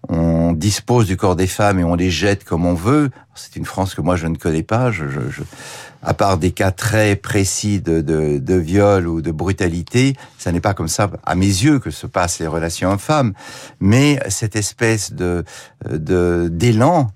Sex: male